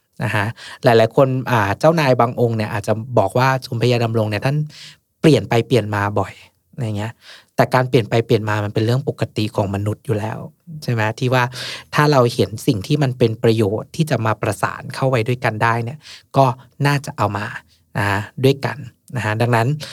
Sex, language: male, Thai